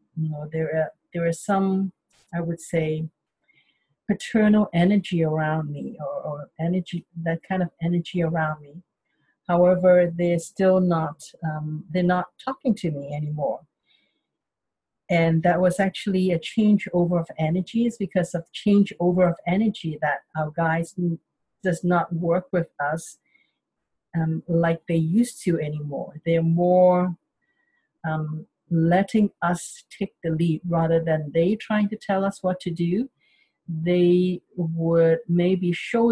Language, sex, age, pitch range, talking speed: English, female, 50-69, 160-185 Hz, 140 wpm